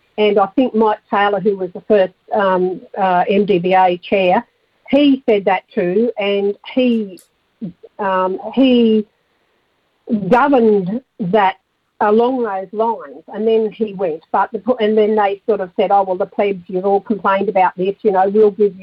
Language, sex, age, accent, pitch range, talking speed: English, female, 50-69, Australian, 205-250 Hz, 165 wpm